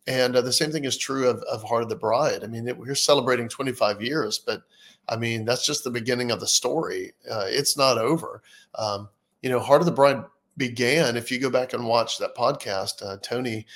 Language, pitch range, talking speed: English, 120-145 Hz, 225 wpm